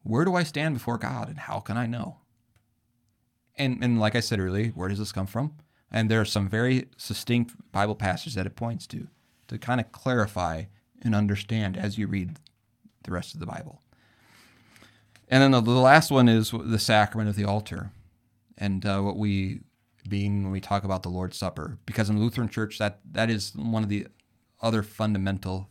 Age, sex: 30-49, male